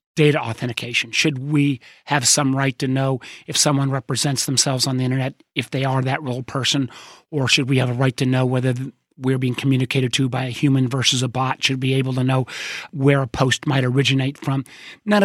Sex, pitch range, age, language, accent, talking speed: male, 130-150 Hz, 40-59, English, American, 215 wpm